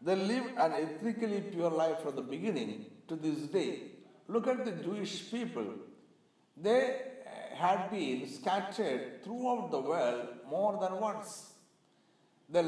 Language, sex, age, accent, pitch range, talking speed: Malayalam, male, 60-79, native, 150-225 Hz, 130 wpm